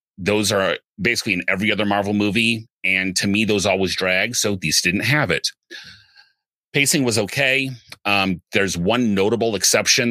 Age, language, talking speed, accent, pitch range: 30-49, English, 160 wpm, American, 95-115 Hz